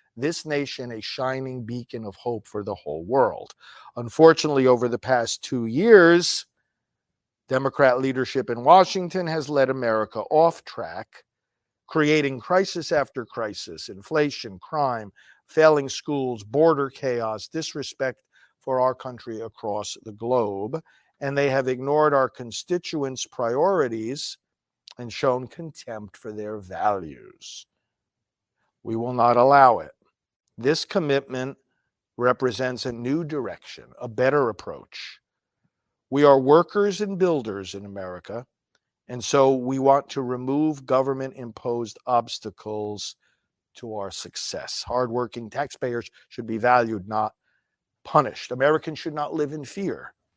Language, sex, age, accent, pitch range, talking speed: English, male, 50-69, American, 120-150 Hz, 120 wpm